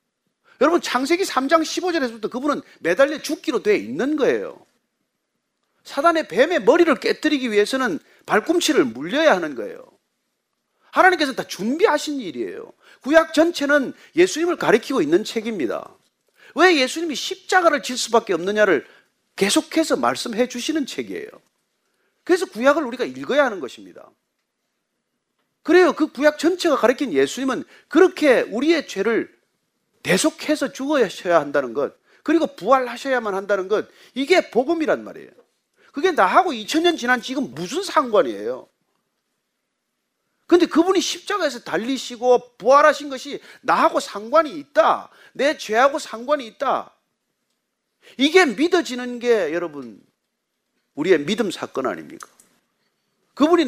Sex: male